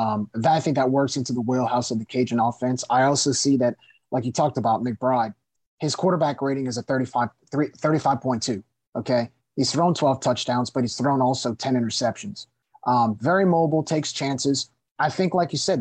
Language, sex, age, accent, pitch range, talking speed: English, male, 30-49, American, 125-155 Hz, 180 wpm